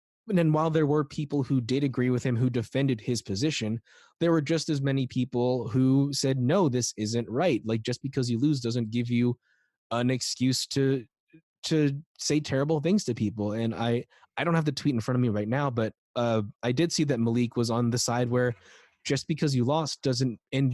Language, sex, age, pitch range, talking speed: English, male, 20-39, 120-150 Hz, 215 wpm